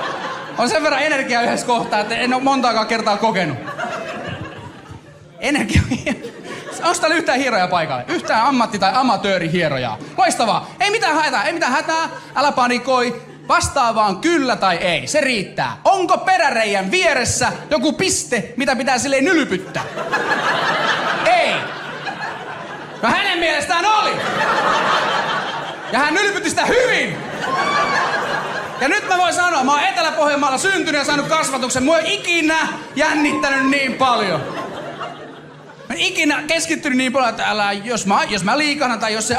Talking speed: 135 wpm